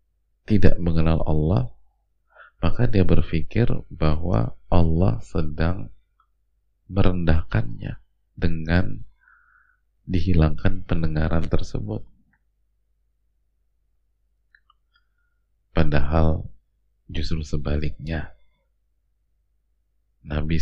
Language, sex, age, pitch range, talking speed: Indonesian, male, 30-49, 80-100 Hz, 50 wpm